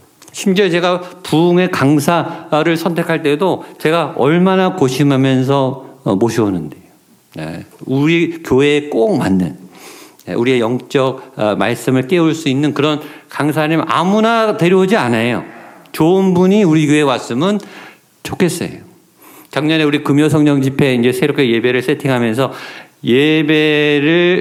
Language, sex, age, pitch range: Korean, male, 50-69, 135-170 Hz